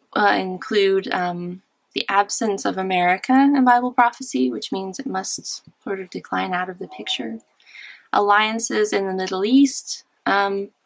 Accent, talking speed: American, 150 wpm